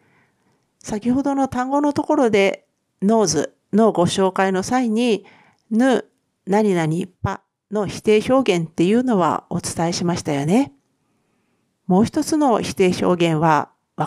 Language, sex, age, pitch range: Japanese, female, 50-69, 165-235 Hz